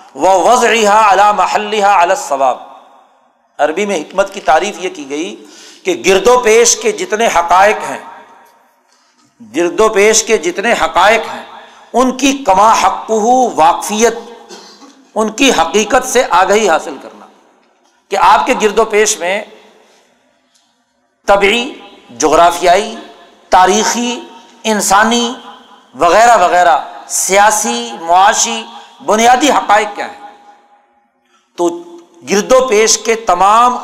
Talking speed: 115 wpm